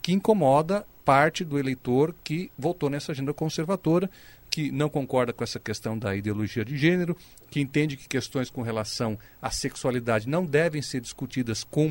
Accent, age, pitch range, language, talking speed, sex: Brazilian, 40-59, 125-175 Hz, Portuguese, 165 wpm, male